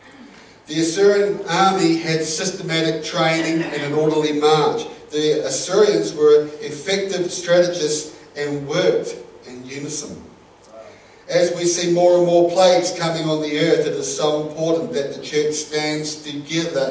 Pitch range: 145-175 Hz